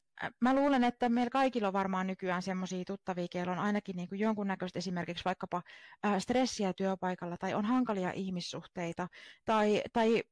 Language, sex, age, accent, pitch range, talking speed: Finnish, female, 30-49, native, 180-235 Hz, 145 wpm